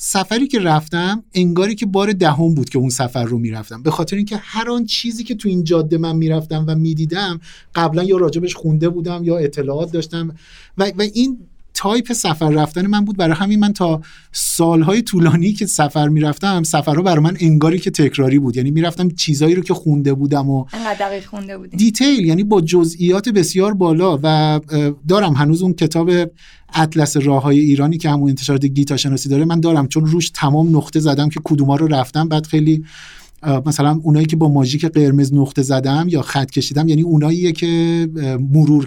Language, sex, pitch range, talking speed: Persian, male, 145-180 Hz, 185 wpm